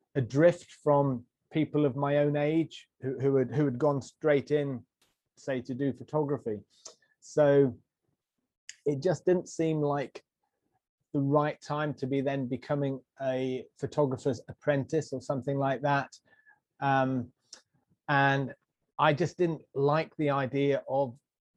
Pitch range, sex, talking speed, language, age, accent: 130-145 Hz, male, 130 wpm, English, 30-49, British